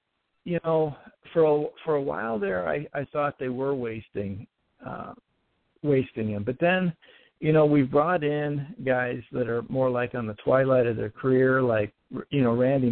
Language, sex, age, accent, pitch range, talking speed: English, male, 60-79, American, 125-155 Hz, 180 wpm